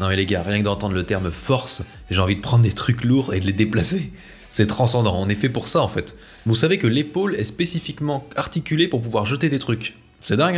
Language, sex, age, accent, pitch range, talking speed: French, male, 20-39, French, 105-145 Hz, 250 wpm